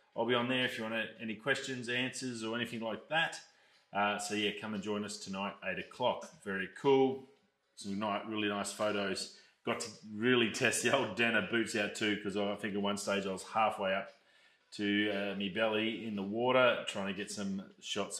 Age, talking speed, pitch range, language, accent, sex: 30-49, 210 wpm, 100-125 Hz, English, Australian, male